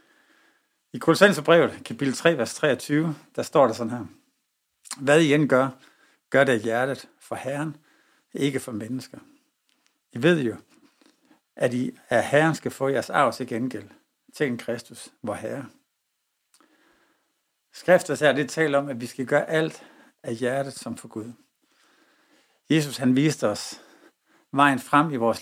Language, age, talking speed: English, 60-79, 150 wpm